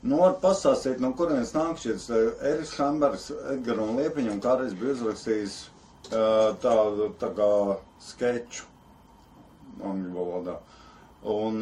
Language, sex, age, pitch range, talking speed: English, male, 50-69, 110-145 Hz, 100 wpm